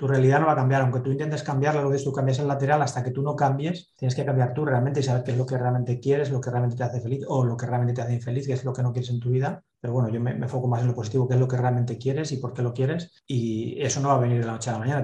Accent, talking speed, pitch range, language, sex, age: Spanish, 360 wpm, 125-140 Hz, Spanish, male, 30-49